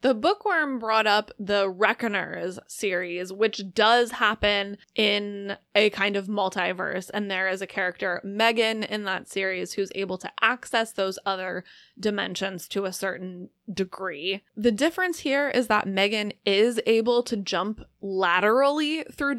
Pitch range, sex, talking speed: 190-240 Hz, female, 145 wpm